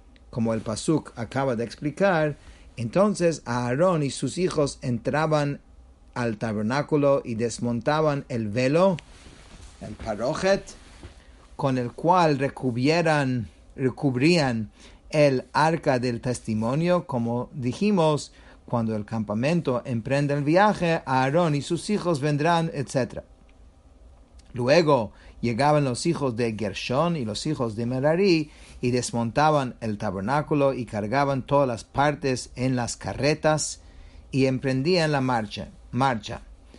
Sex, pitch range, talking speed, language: male, 110-155 Hz, 115 wpm, English